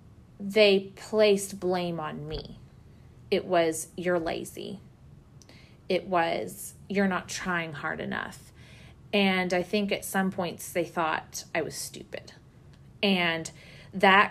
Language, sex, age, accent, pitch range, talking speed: English, female, 30-49, American, 170-205 Hz, 120 wpm